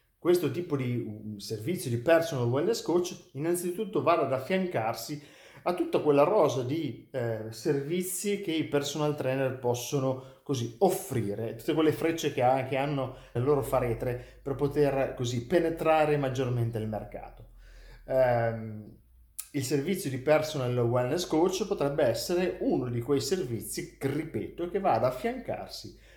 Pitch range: 120-150 Hz